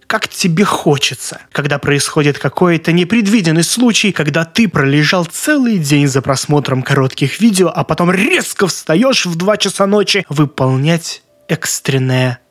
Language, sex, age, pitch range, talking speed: Russian, male, 20-39, 140-205 Hz, 130 wpm